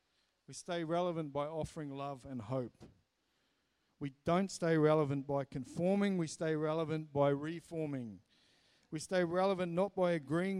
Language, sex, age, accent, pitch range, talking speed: English, male, 50-69, Australian, 140-175 Hz, 140 wpm